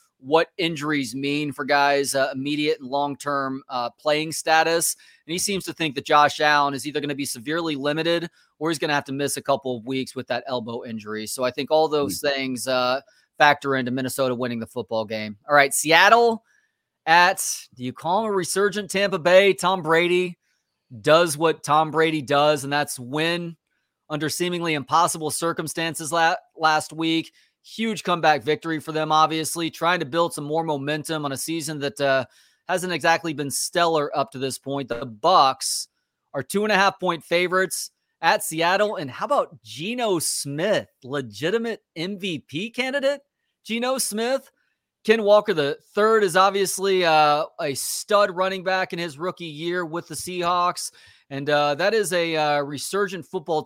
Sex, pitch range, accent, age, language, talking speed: male, 140-180 Hz, American, 30-49, English, 170 wpm